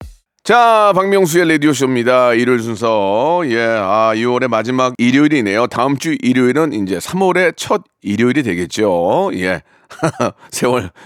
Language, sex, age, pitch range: Korean, male, 40-59, 110-180 Hz